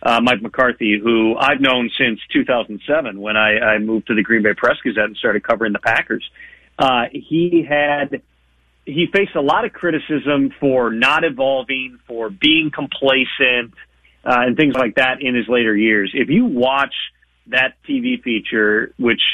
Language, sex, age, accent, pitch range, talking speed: English, male, 40-59, American, 115-150 Hz, 170 wpm